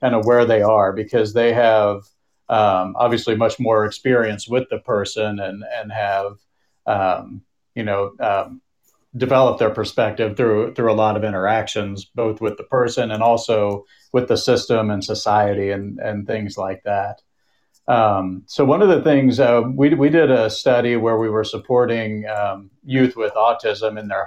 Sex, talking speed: male, 175 wpm